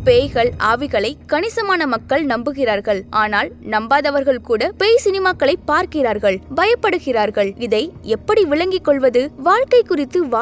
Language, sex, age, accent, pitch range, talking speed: Tamil, female, 20-39, native, 245-340 Hz, 105 wpm